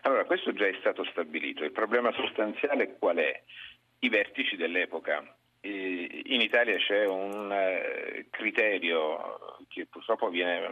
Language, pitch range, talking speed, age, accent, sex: Italian, 100-165 Hz, 130 wpm, 40-59, native, male